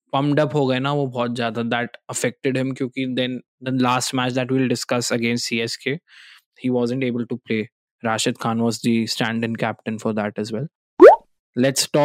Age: 20-39